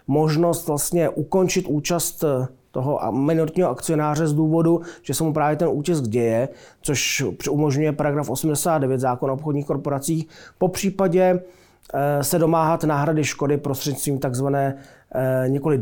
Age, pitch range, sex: 30-49, 130-150 Hz, male